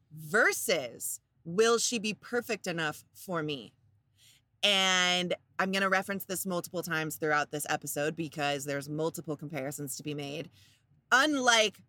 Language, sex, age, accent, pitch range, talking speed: English, female, 20-39, American, 145-200 Hz, 130 wpm